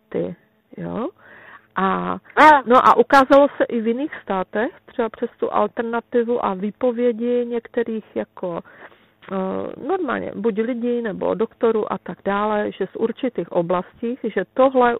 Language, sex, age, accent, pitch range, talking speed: Czech, female, 40-59, native, 175-215 Hz, 135 wpm